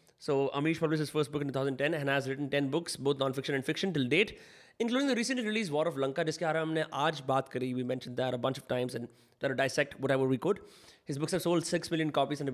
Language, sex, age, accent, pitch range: Hindi, male, 20-39, native, 140-180 Hz